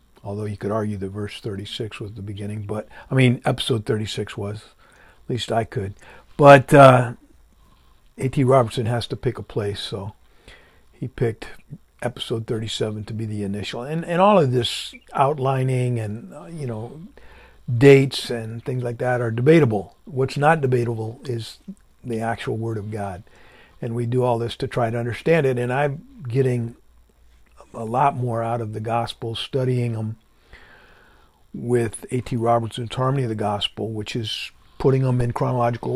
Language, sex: English, male